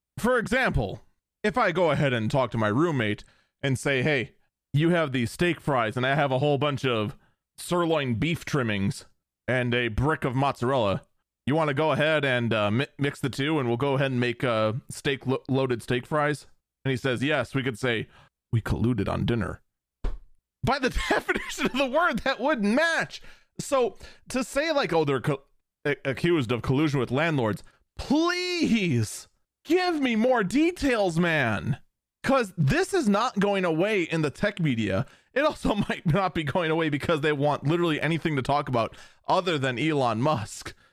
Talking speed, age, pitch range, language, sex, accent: 180 wpm, 30-49, 130-185 Hz, English, male, American